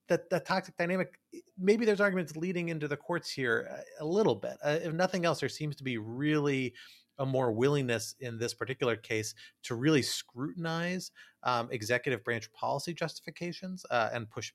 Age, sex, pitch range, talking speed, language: 30-49, male, 115-160 Hz, 170 wpm, English